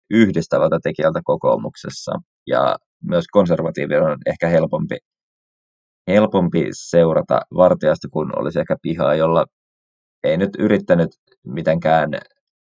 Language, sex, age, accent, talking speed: Finnish, male, 20-39, native, 100 wpm